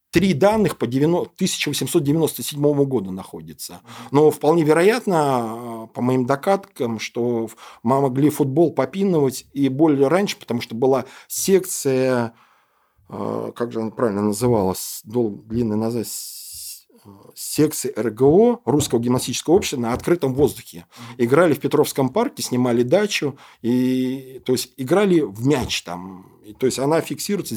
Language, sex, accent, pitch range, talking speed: Russian, male, native, 120-155 Hz, 125 wpm